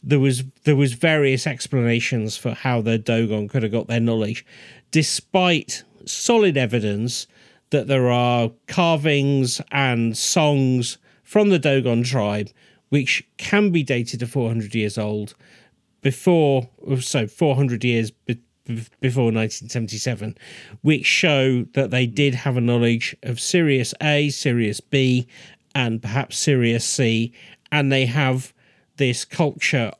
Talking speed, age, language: 130 wpm, 40-59, English